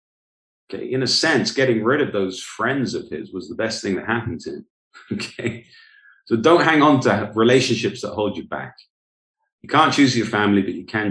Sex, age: male, 40-59